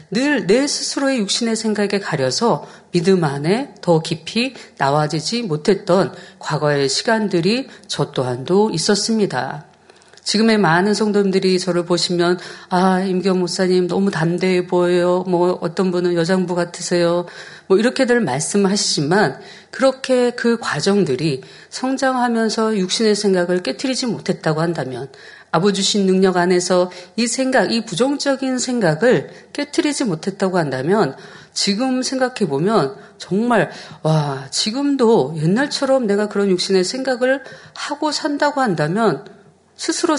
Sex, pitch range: female, 170-225 Hz